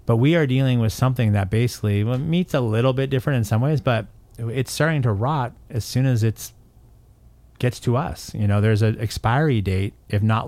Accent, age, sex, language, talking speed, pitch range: American, 30-49, male, English, 210 wpm, 100-120 Hz